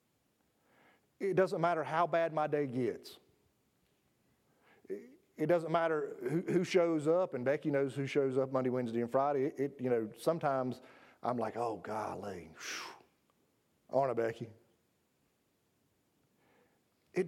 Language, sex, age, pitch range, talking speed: English, male, 40-59, 130-175 Hz, 130 wpm